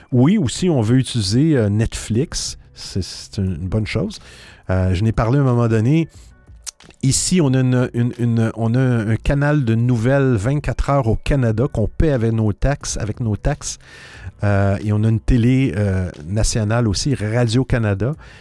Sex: male